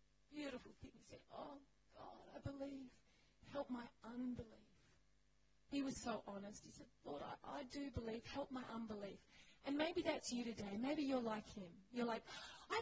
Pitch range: 210-280 Hz